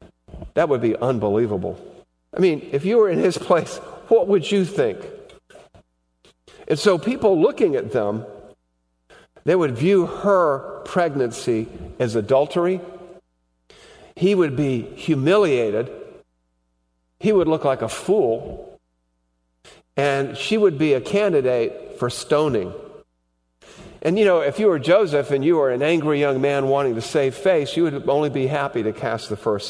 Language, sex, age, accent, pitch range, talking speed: English, male, 50-69, American, 100-160 Hz, 150 wpm